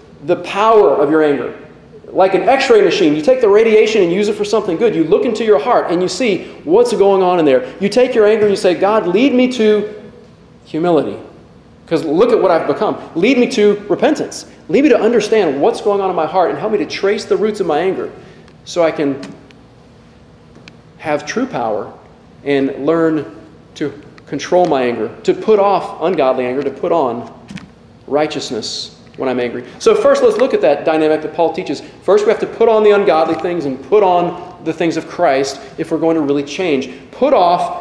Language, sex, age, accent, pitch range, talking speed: English, male, 40-59, American, 150-220 Hz, 210 wpm